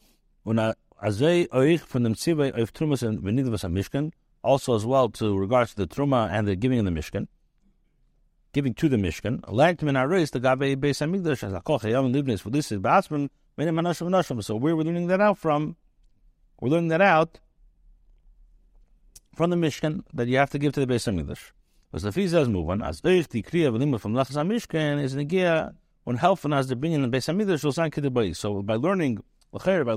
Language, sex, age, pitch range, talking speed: English, male, 60-79, 115-155 Hz, 95 wpm